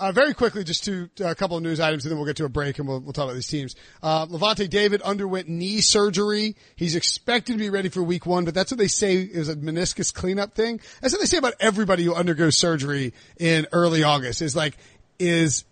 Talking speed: 245 wpm